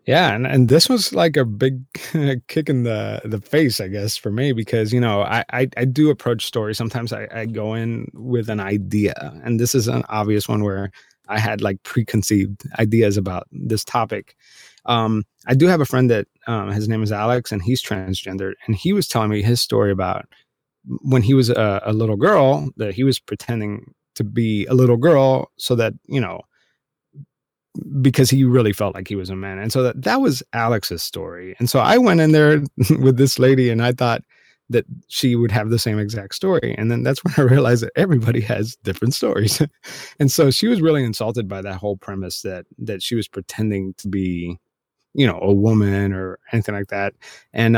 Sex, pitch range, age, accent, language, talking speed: male, 105-130 Hz, 20-39, American, English, 205 wpm